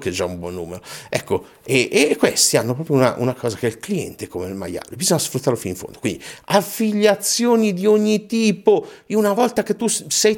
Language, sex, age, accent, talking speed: Italian, male, 50-69, native, 220 wpm